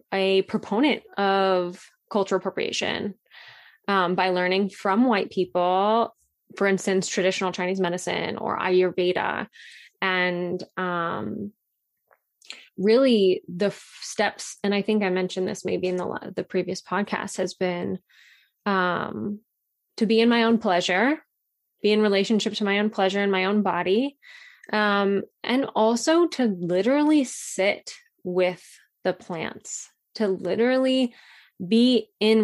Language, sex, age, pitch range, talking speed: English, female, 20-39, 185-225 Hz, 130 wpm